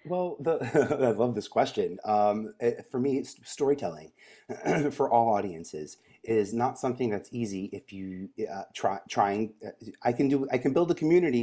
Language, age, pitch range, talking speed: English, 30-49, 105-135 Hz, 175 wpm